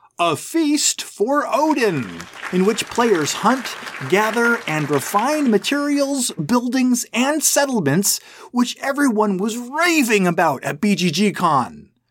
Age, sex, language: 30-49, male, English